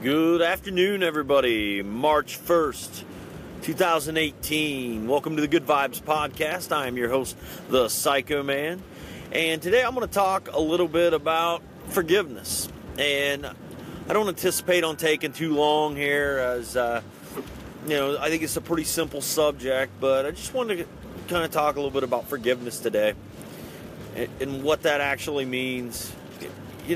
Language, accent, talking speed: English, American, 160 wpm